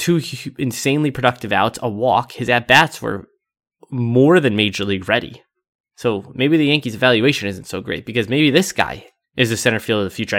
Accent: American